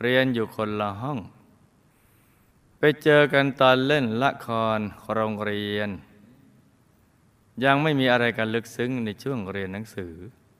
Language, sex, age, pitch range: Thai, male, 20-39, 100-125 Hz